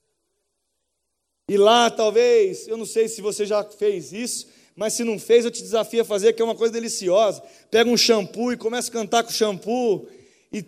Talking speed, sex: 200 wpm, male